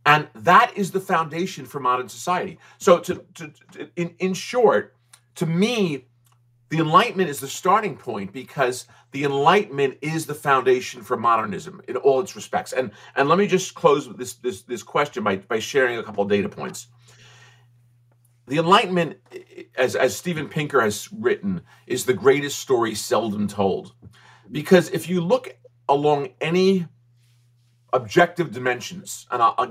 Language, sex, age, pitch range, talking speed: English, male, 40-59, 120-175 Hz, 160 wpm